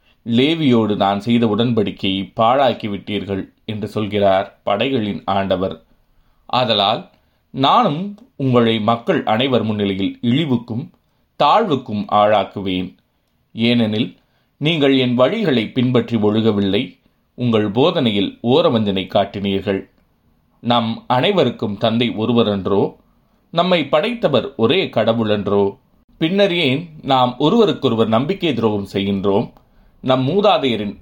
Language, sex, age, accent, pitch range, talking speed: Tamil, male, 30-49, native, 100-130 Hz, 90 wpm